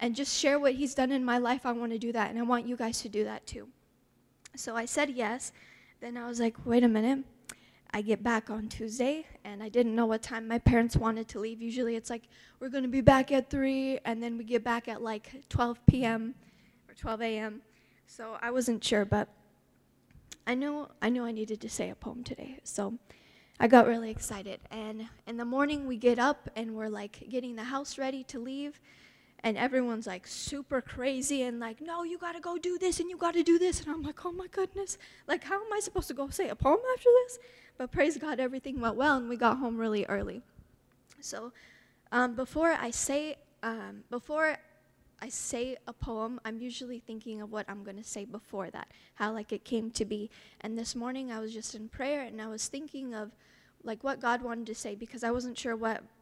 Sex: female